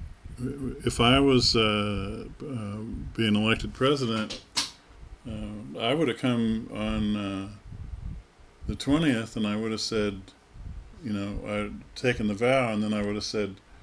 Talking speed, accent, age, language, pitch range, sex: 150 wpm, American, 40-59, English, 95-120 Hz, male